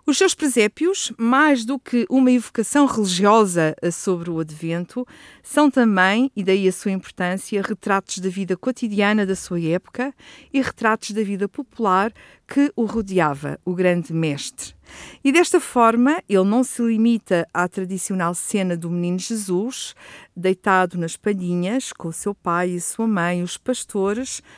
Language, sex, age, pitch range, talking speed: Portuguese, female, 50-69, 180-235 Hz, 150 wpm